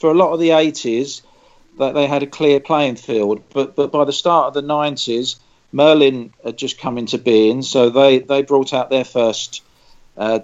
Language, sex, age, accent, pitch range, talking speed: English, male, 40-59, British, 115-150 Hz, 195 wpm